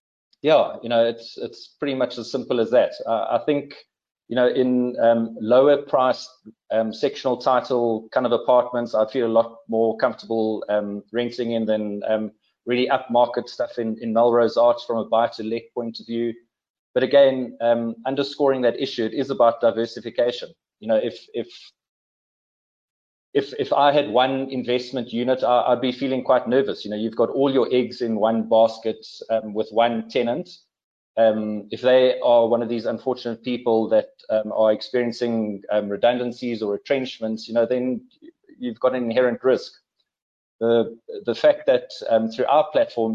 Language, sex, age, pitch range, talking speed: English, male, 30-49, 115-130 Hz, 175 wpm